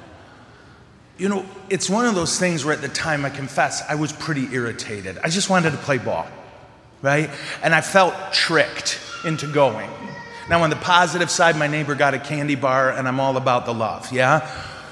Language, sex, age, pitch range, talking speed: English, male, 30-49, 130-165 Hz, 195 wpm